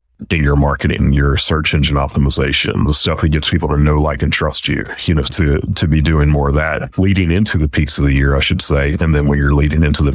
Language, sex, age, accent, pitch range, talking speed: English, male, 40-59, American, 70-85 Hz, 255 wpm